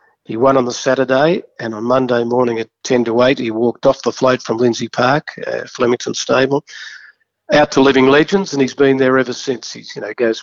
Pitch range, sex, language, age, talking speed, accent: 125-140 Hz, male, English, 50-69, 205 wpm, Australian